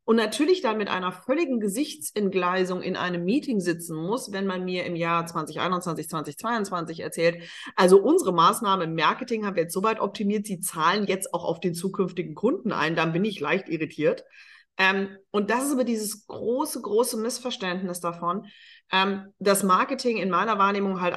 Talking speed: 165 wpm